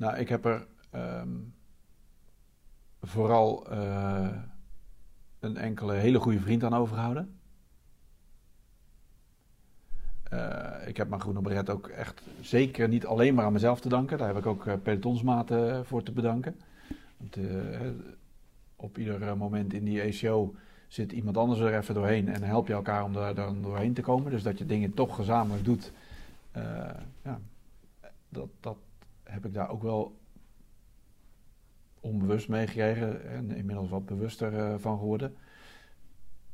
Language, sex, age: Dutch, male, 50-69